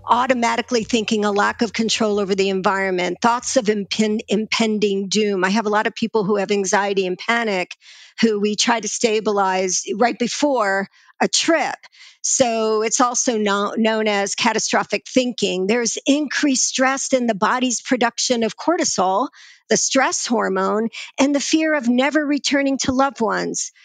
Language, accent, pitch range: English, American, 205-255 Hz